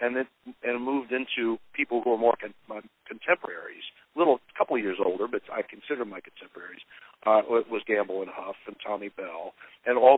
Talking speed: 205 wpm